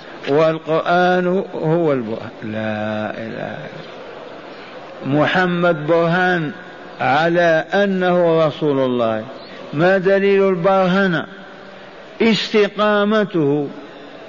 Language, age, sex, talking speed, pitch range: Arabic, 50-69, male, 65 wpm, 145-190 Hz